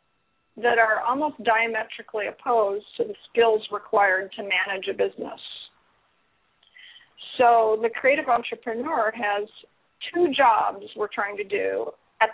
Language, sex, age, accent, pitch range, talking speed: English, female, 40-59, American, 215-265 Hz, 120 wpm